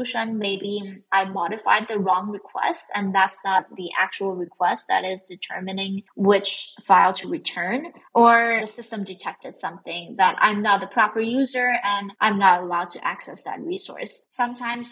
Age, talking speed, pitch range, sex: 20-39, 155 wpm, 190-235 Hz, female